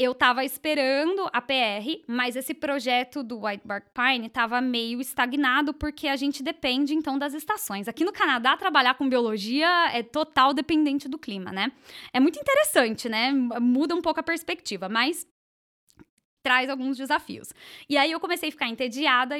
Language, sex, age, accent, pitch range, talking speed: English, female, 10-29, Brazilian, 230-290 Hz, 165 wpm